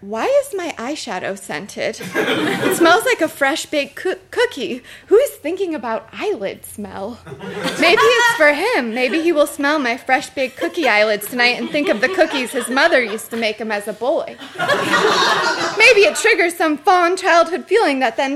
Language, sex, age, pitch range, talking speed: English, female, 20-39, 215-315 Hz, 185 wpm